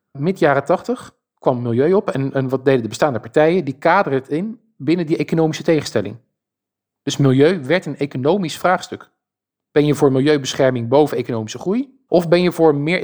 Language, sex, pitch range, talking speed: Dutch, male, 130-165 Hz, 180 wpm